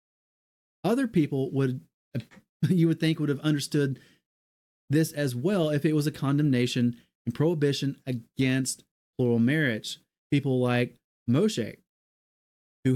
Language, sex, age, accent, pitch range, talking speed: English, male, 30-49, American, 120-145 Hz, 120 wpm